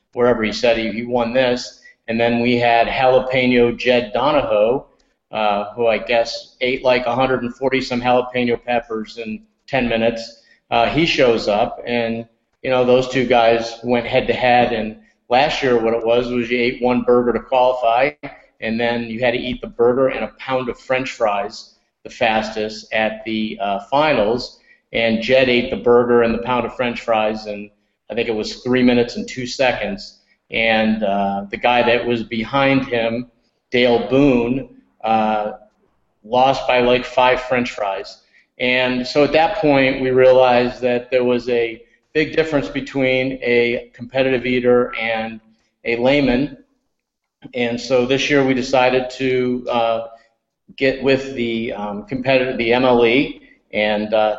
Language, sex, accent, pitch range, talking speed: English, male, American, 115-130 Hz, 165 wpm